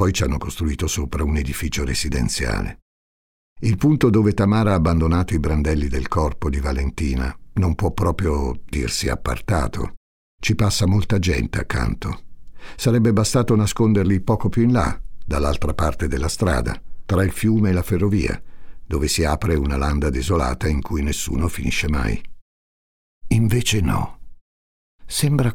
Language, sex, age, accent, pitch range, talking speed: Italian, male, 60-79, native, 75-110 Hz, 145 wpm